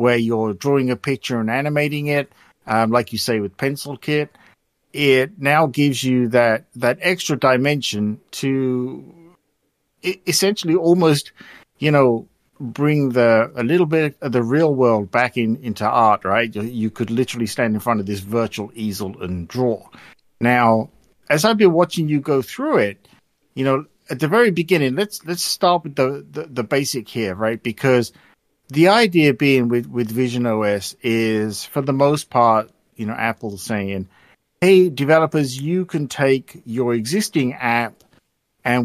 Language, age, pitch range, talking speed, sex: English, 50-69, 115-150 Hz, 165 wpm, male